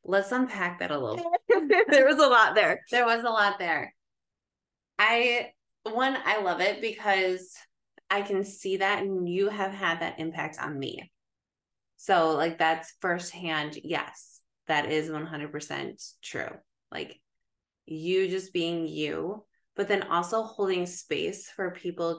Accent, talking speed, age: American, 150 wpm, 20-39